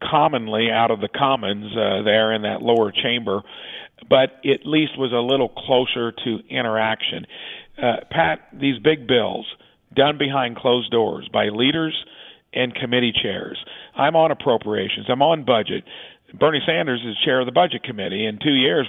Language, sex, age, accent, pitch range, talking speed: English, male, 50-69, American, 115-145 Hz, 160 wpm